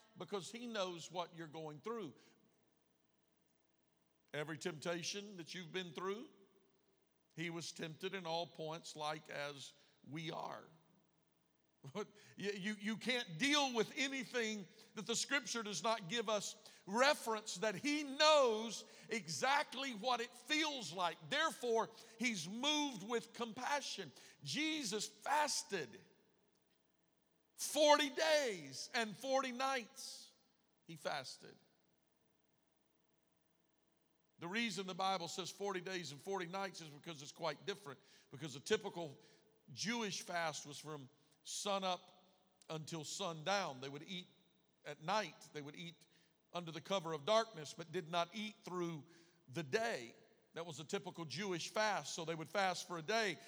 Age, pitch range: 50-69, 165-225 Hz